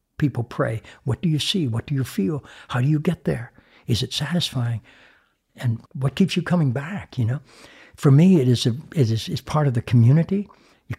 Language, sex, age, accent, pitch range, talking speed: English, male, 60-79, American, 115-150 Hz, 195 wpm